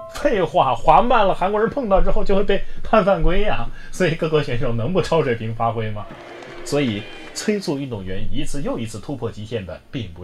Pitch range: 115-185 Hz